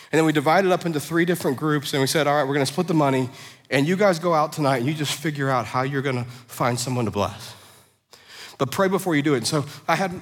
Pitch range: 125-160 Hz